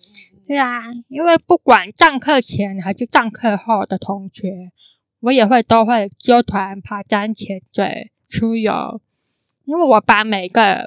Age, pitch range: 10-29, 200-240 Hz